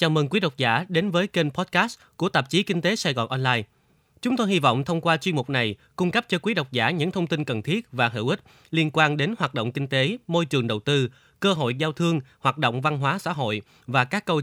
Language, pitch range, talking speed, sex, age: Vietnamese, 130-175 Hz, 265 wpm, male, 20-39